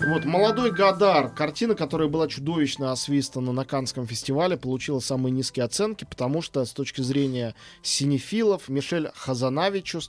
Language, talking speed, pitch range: Russian, 135 wpm, 125-160 Hz